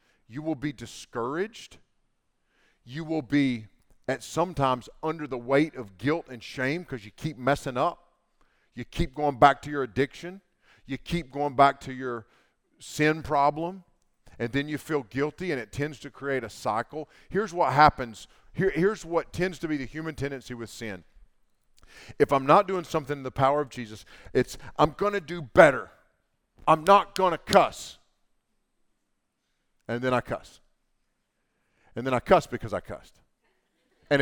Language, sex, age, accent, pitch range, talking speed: English, male, 40-59, American, 130-175 Hz, 165 wpm